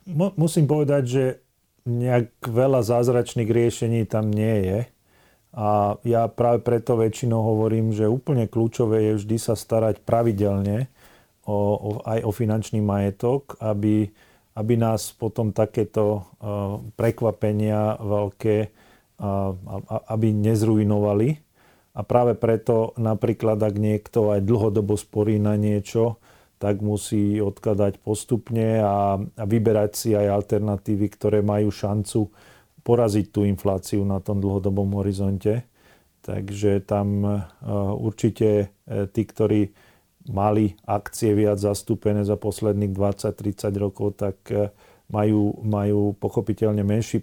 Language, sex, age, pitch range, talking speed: Slovak, male, 40-59, 105-115 Hz, 115 wpm